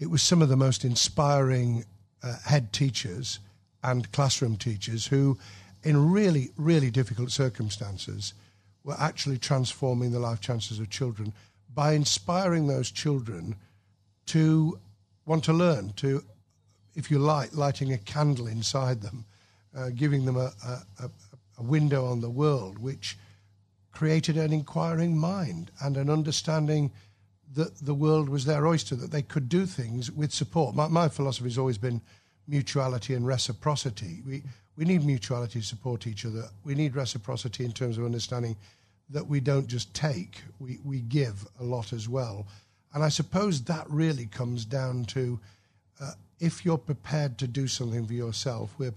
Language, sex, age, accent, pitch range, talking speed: English, male, 60-79, British, 110-145 Hz, 160 wpm